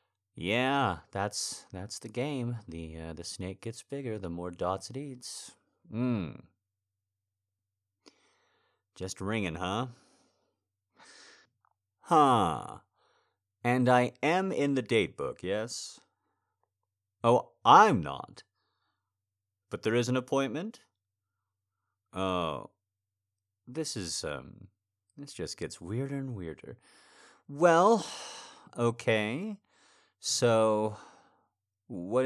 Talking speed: 95 wpm